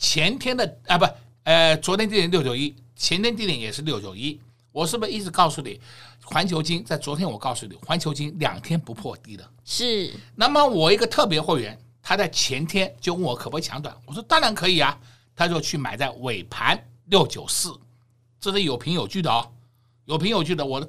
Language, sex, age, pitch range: Chinese, male, 60-79, 120-185 Hz